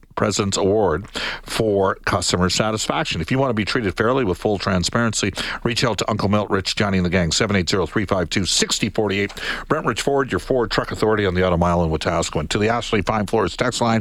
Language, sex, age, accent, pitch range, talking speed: English, male, 50-69, American, 95-135 Hz, 210 wpm